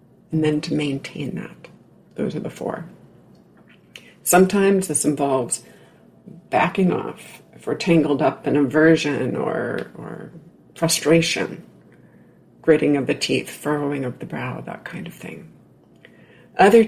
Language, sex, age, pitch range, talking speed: English, female, 50-69, 145-180 Hz, 130 wpm